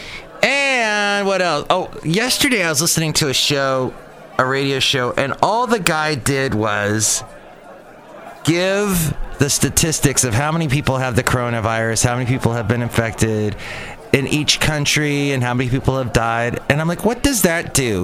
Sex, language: male, English